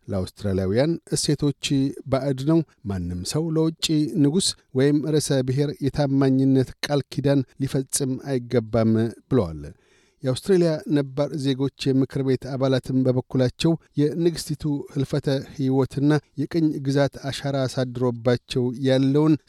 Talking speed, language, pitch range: 95 wpm, Amharic, 130-150 Hz